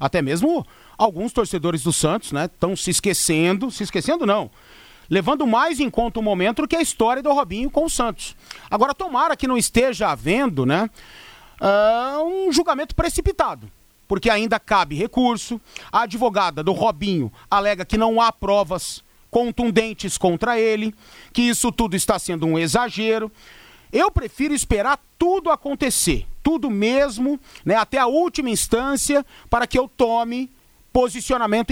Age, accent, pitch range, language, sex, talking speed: 40-59, Brazilian, 200-260 Hz, Portuguese, male, 150 wpm